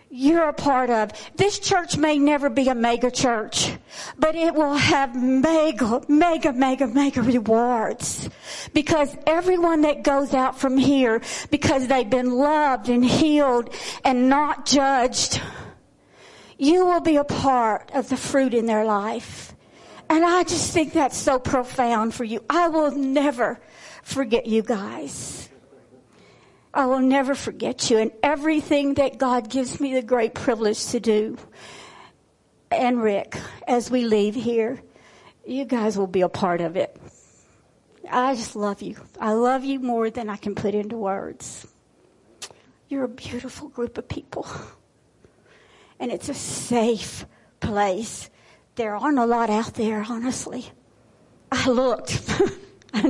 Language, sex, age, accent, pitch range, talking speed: English, female, 50-69, American, 230-290 Hz, 145 wpm